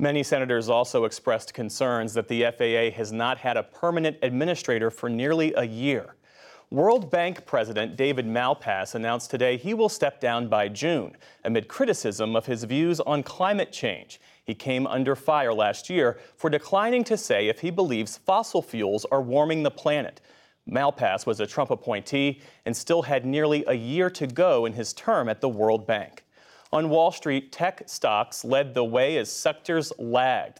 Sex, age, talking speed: male, 40-59, 175 wpm